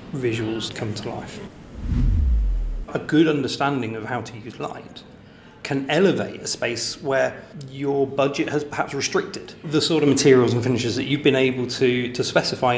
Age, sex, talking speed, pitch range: 30-49, male, 165 wpm, 115-145 Hz